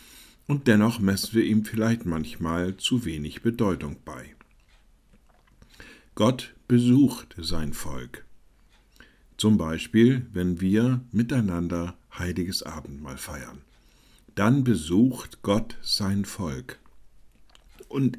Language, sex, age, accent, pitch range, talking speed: German, male, 50-69, German, 80-115 Hz, 95 wpm